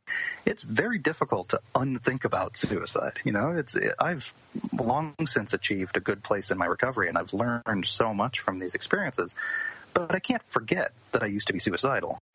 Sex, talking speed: male, 185 wpm